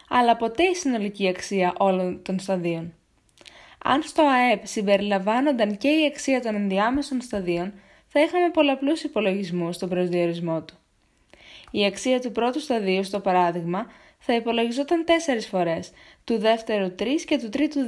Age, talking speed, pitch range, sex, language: 20-39, 140 wpm, 190-265 Hz, female, Greek